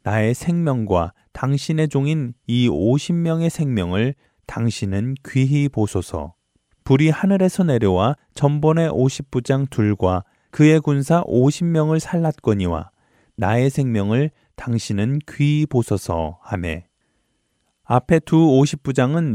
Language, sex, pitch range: Korean, male, 105-150 Hz